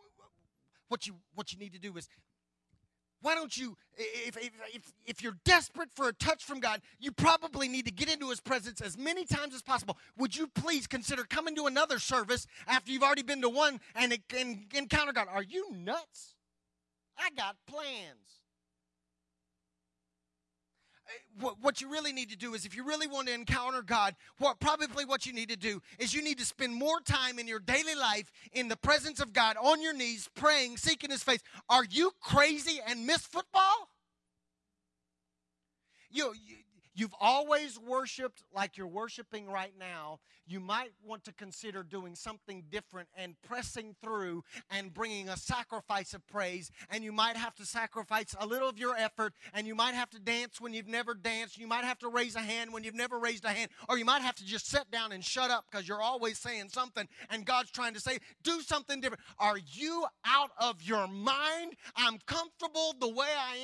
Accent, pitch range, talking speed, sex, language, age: American, 205-265 Hz, 190 wpm, male, English, 30-49